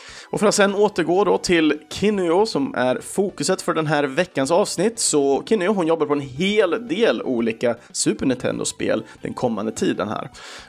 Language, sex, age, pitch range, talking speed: Swedish, male, 30-49, 125-195 Hz, 175 wpm